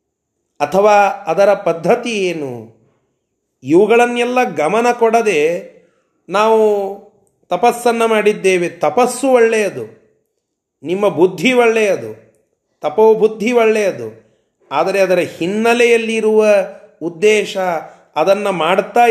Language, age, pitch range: Kannada, 30-49, 150-220 Hz